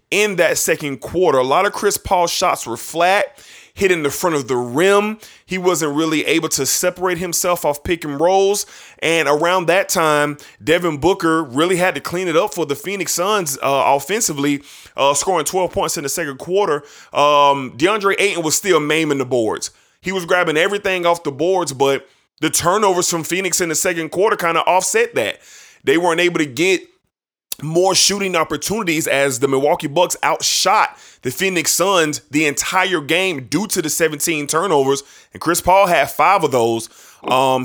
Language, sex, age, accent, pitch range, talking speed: English, male, 20-39, American, 140-185 Hz, 185 wpm